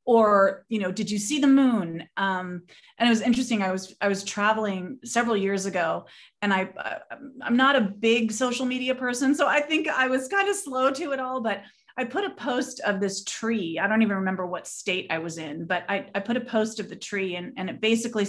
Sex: female